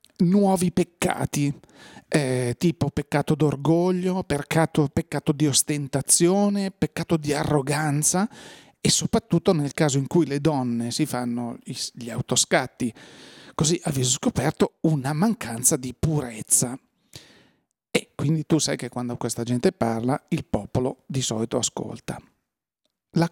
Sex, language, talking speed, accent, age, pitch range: male, Italian, 120 wpm, native, 40-59, 140-175 Hz